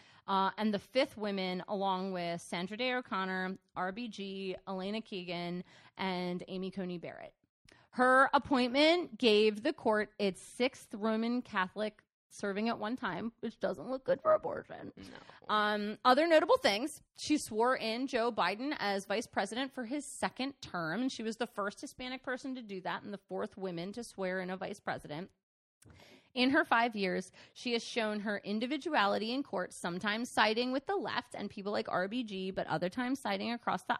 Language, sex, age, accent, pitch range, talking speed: English, female, 30-49, American, 190-255 Hz, 175 wpm